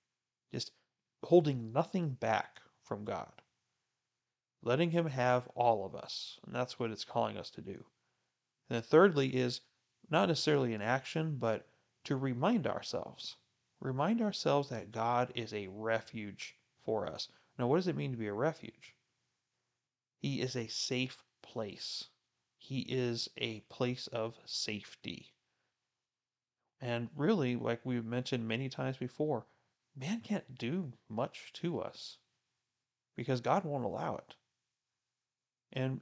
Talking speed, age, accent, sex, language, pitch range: 135 wpm, 30-49, American, male, English, 115-140 Hz